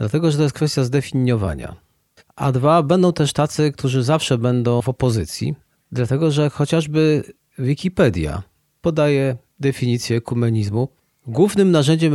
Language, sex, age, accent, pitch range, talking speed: Polish, male, 40-59, native, 115-145 Hz, 125 wpm